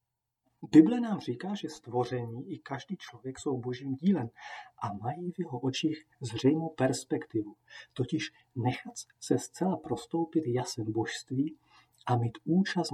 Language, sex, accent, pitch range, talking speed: Czech, male, native, 120-160 Hz, 130 wpm